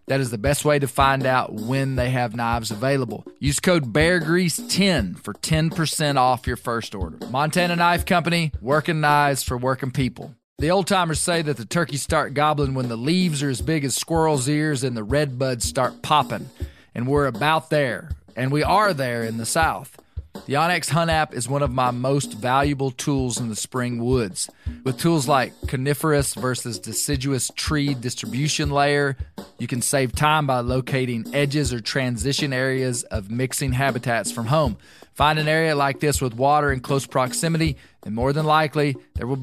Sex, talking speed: male, 185 wpm